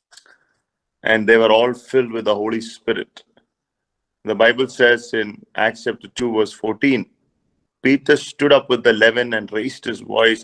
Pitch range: 110-125 Hz